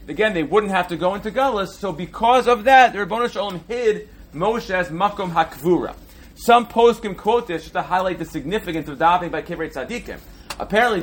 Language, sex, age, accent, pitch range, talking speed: English, male, 30-49, American, 160-215 Hz, 190 wpm